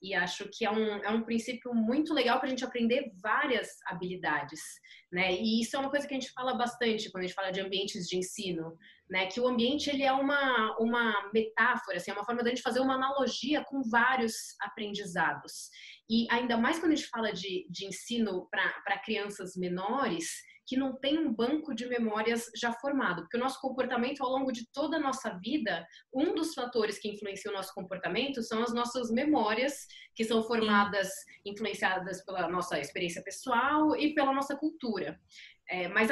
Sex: female